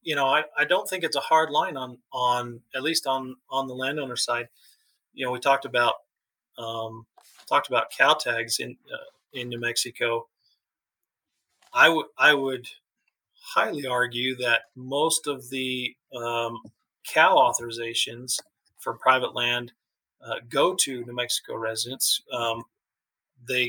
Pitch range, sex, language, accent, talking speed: 120-140 Hz, male, English, American, 145 wpm